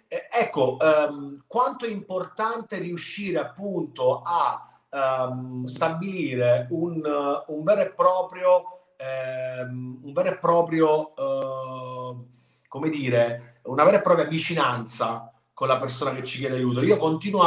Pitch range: 125-165 Hz